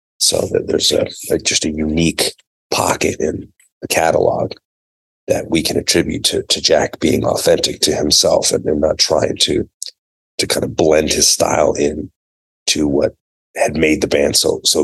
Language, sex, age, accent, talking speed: English, male, 30-49, American, 175 wpm